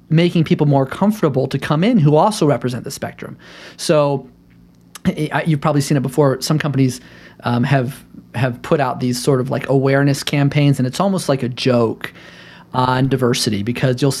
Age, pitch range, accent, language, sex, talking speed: 30-49, 130-165 Hz, American, English, male, 175 wpm